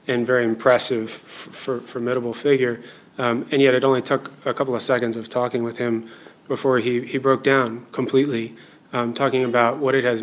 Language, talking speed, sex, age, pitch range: English, 195 wpm, male, 30-49, 115-135 Hz